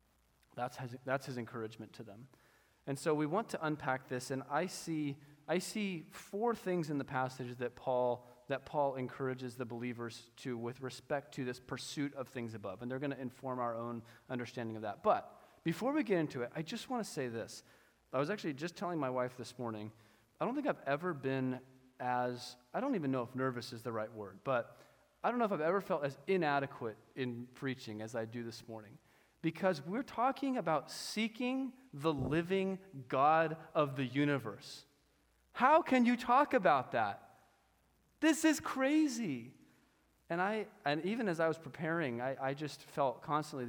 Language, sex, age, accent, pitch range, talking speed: English, male, 30-49, American, 125-170 Hz, 190 wpm